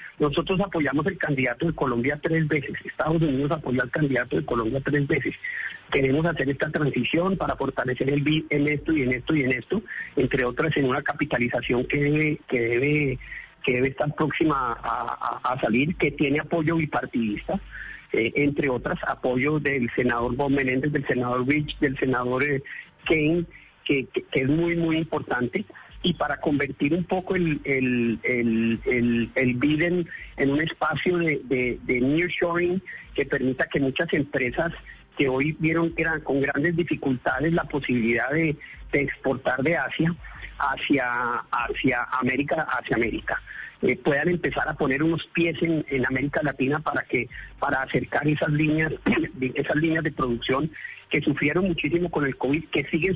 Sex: male